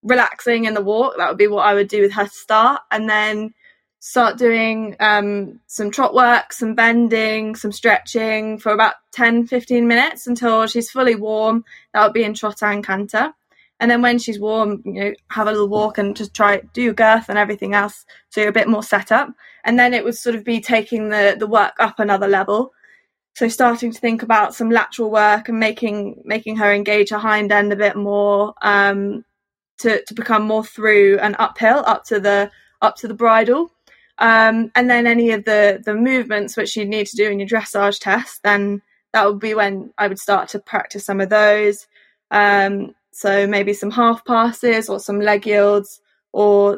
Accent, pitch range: British, 205-230 Hz